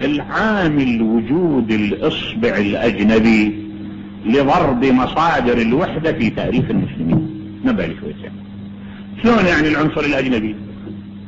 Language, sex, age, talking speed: English, male, 50-69, 85 wpm